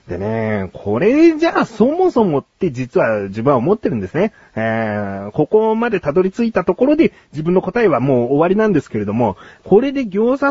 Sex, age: male, 40-59